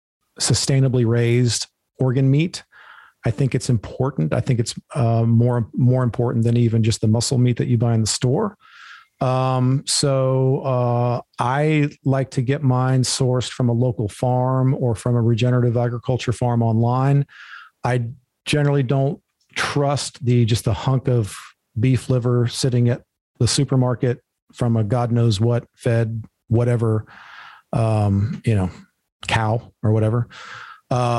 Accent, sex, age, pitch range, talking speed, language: American, male, 40-59, 115-135 Hz, 145 wpm, English